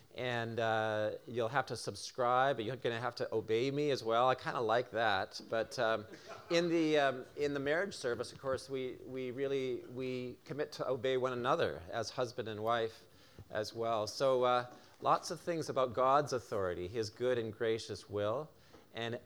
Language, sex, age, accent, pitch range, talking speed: English, male, 40-59, American, 110-140 Hz, 185 wpm